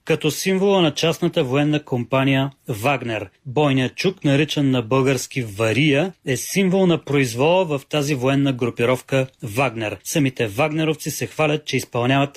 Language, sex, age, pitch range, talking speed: Bulgarian, male, 30-49, 135-165 Hz, 135 wpm